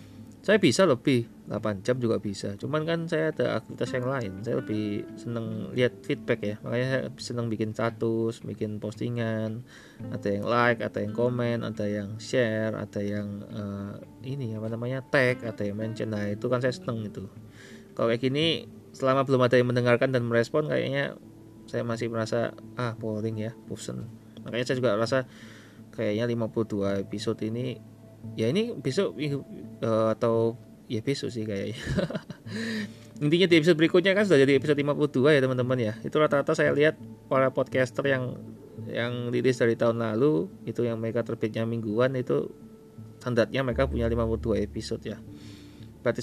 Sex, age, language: male, 20-39, Indonesian